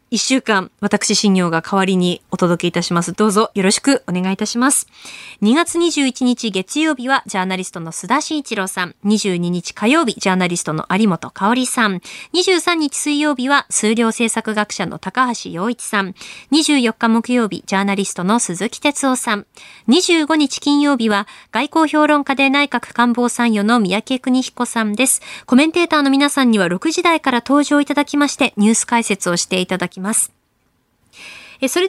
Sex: female